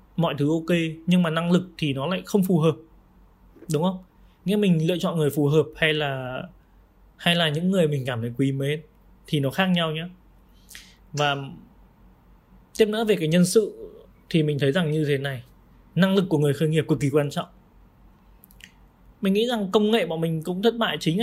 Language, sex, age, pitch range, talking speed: Vietnamese, male, 20-39, 130-175 Hz, 205 wpm